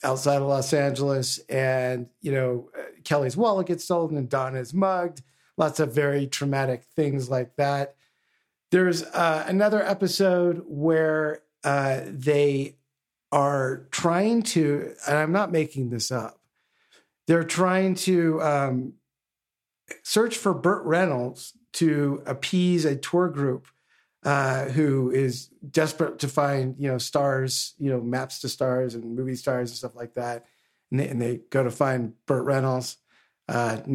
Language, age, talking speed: English, 50-69, 140 wpm